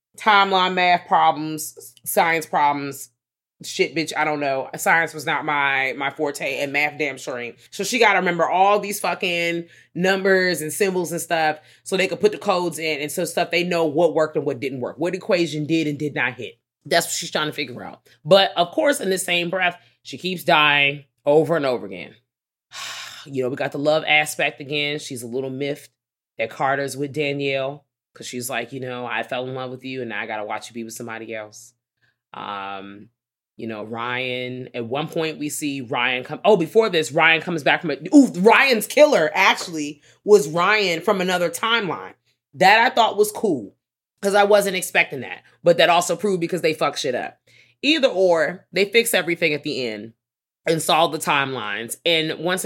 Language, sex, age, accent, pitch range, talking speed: English, female, 20-39, American, 130-175 Hz, 205 wpm